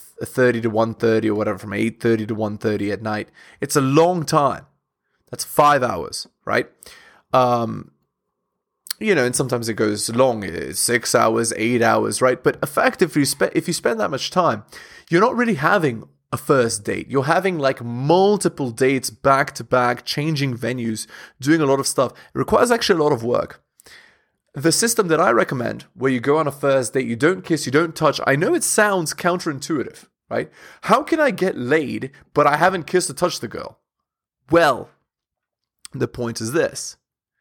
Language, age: English, 20-39